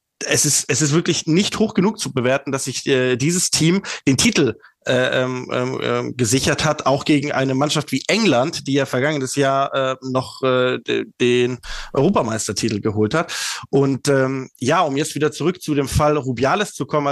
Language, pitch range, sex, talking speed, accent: German, 130-155 Hz, male, 180 wpm, German